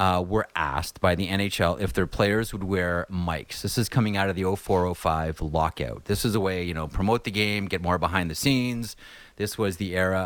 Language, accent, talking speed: English, American, 220 wpm